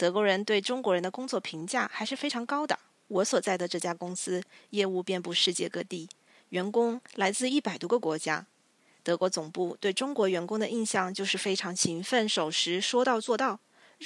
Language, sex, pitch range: Chinese, female, 175-240 Hz